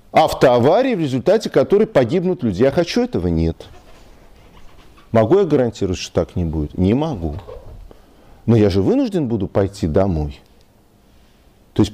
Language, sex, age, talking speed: Russian, male, 50-69, 145 wpm